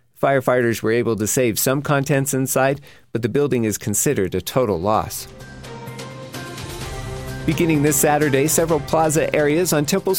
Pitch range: 110-140 Hz